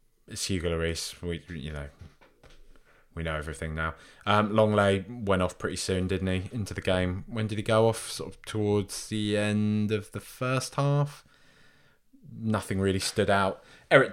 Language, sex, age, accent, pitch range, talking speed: English, male, 20-39, British, 95-120 Hz, 170 wpm